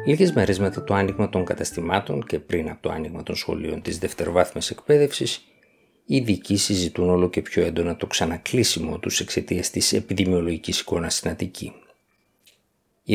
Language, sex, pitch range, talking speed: Greek, male, 90-110 Hz, 155 wpm